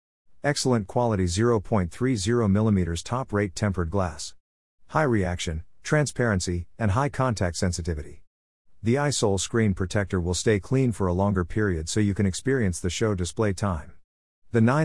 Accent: American